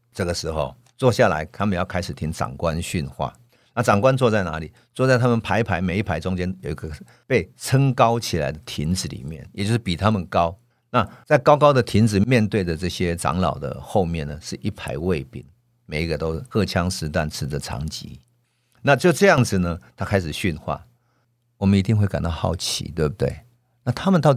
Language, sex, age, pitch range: Chinese, male, 50-69, 85-120 Hz